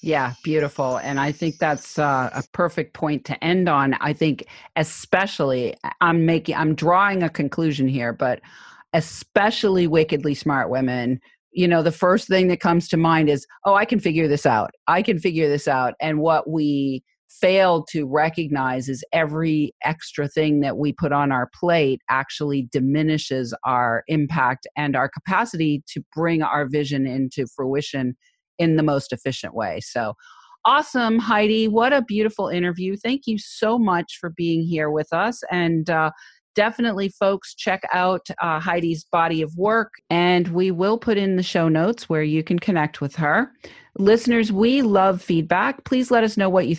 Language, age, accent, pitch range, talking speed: English, 40-59, American, 150-195 Hz, 170 wpm